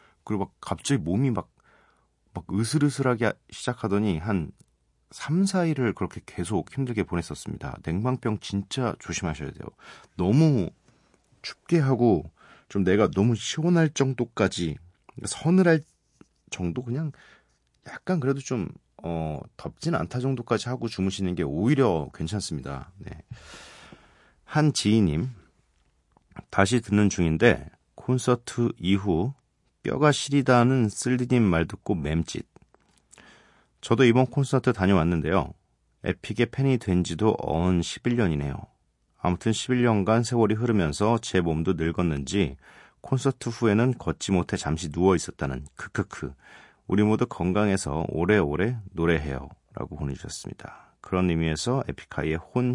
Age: 40-59